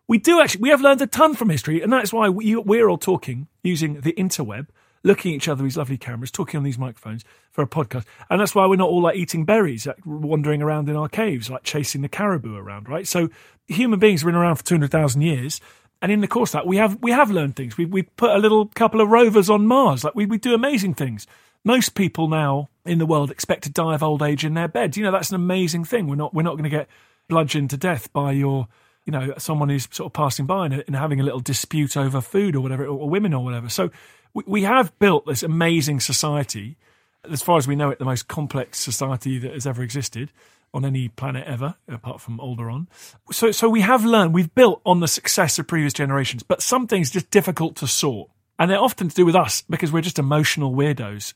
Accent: British